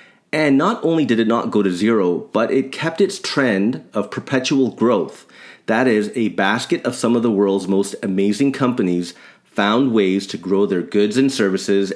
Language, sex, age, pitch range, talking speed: English, male, 30-49, 100-135 Hz, 185 wpm